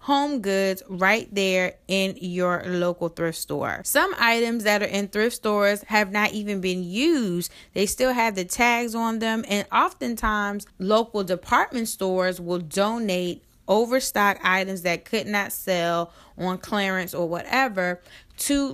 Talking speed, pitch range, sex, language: 145 wpm, 185-225 Hz, female, English